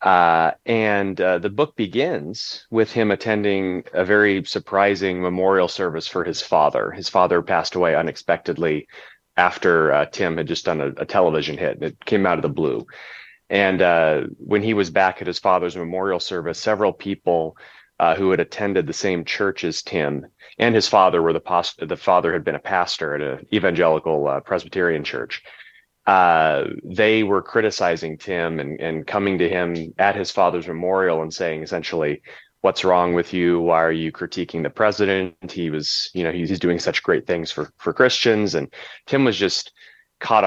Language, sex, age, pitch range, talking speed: English, male, 30-49, 85-105 Hz, 180 wpm